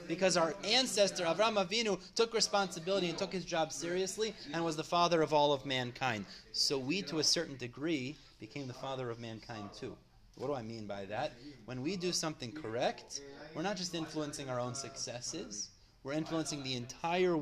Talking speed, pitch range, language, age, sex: 185 wpm, 130-180 Hz, English, 30-49, male